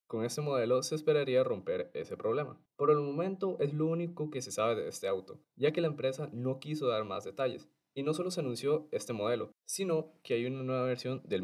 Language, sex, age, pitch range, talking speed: Spanish, male, 20-39, 120-165 Hz, 225 wpm